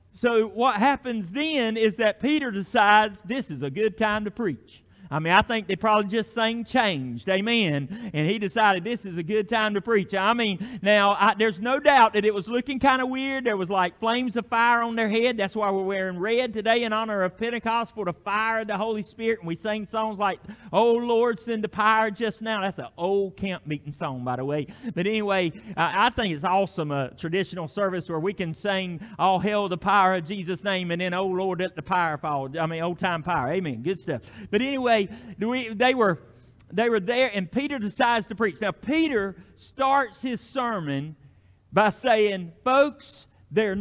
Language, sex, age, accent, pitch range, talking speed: English, male, 40-59, American, 180-225 Hz, 205 wpm